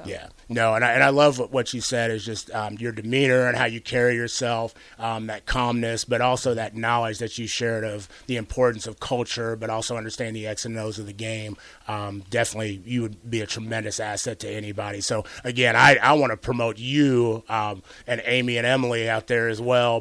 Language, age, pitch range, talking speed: English, 30-49, 115-125 Hz, 210 wpm